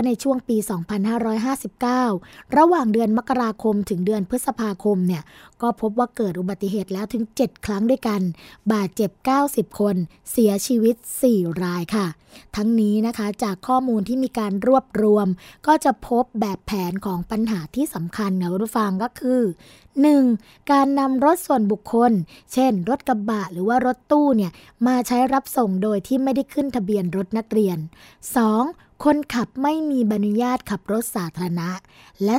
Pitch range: 205-255 Hz